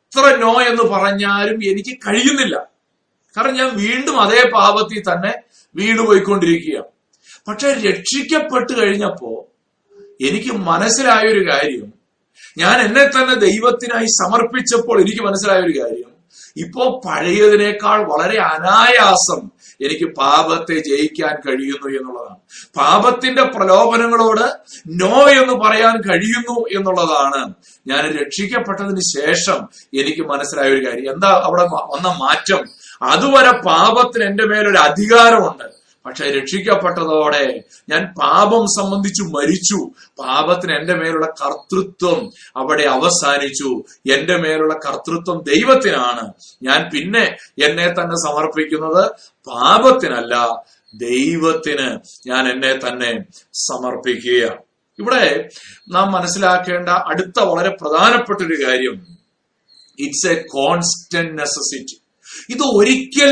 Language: Malayalam